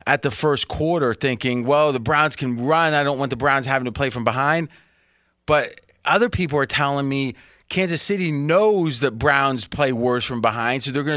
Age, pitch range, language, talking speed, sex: 30-49, 115-150 Hz, English, 205 wpm, male